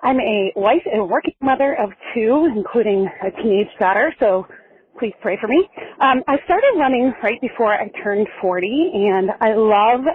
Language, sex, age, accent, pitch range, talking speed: English, female, 30-49, American, 205-280 Hz, 175 wpm